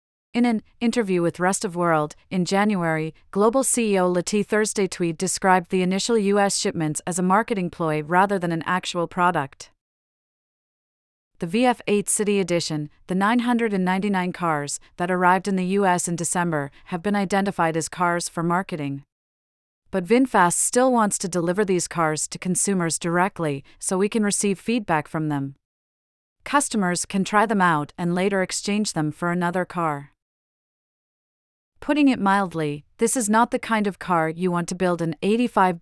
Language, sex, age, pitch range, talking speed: English, female, 40-59, 170-200 Hz, 160 wpm